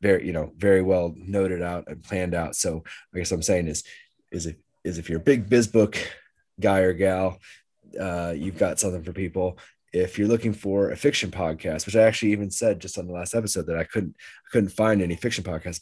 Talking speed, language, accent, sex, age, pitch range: 230 wpm, English, American, male, 20-39, 85-105 Hz